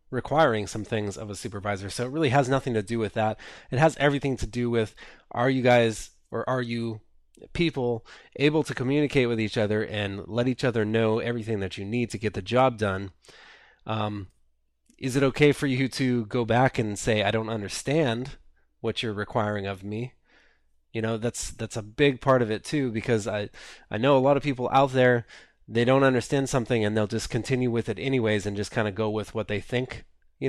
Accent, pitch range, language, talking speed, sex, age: American, 105-130 Hz, English, 215 wpm, male, 20-39